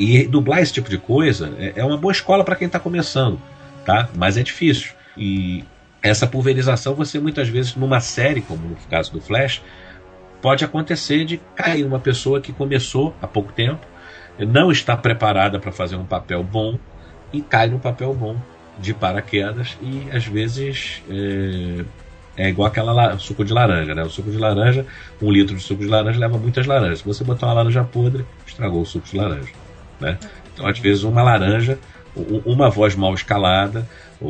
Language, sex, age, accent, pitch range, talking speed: Portuguese, male, 40-59, Brazilian, 95-130 Hz, 180 wpm